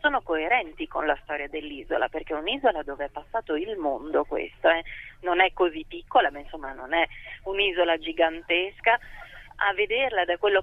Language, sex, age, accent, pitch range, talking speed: Italian, female, 30-49, native, 160-180 Hz, 170 wpm